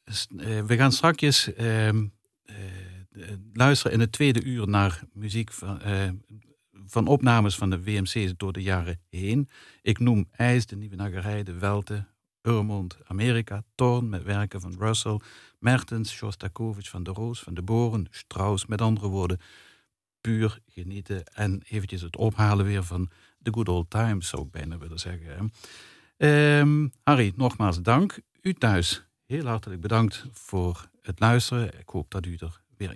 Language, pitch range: Dutch, 95-120 Hz